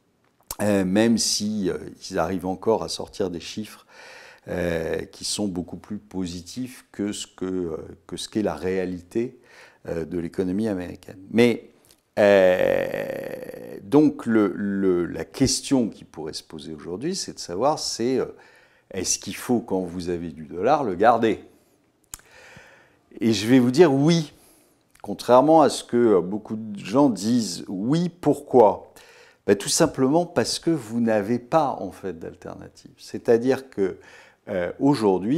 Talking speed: 150 wpm